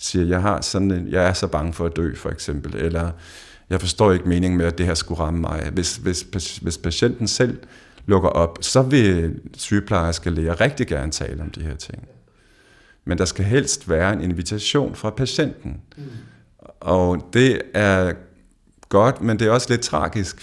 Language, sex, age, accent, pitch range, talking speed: Danish, male, 50-69, native, 90-110 Hz, 175 wpm